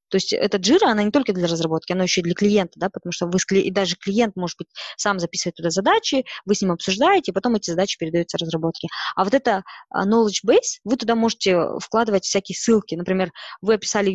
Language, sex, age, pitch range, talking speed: Russian, female, 20-39, 175-225 Hz, 215 wpm